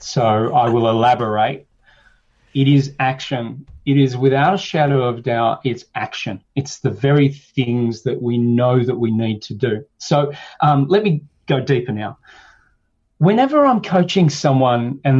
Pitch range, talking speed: 120-150 Hz, 160 wpm